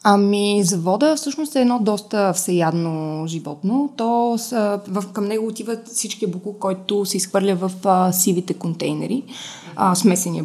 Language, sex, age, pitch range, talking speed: Bulgarian, female, 20-39, 185-230 Hz, 145 wpm